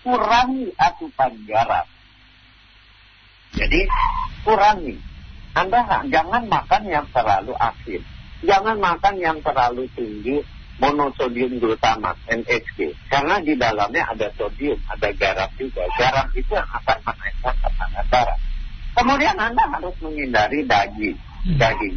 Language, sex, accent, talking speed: Indonesian, male, native, 105 wpm